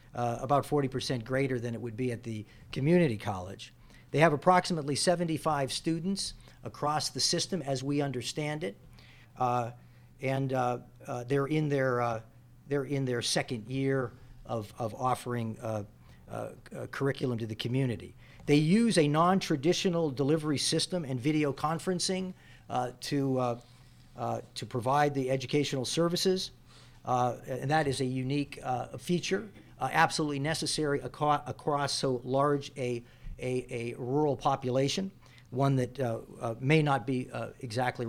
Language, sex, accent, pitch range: English, male, American, 120-150 Hz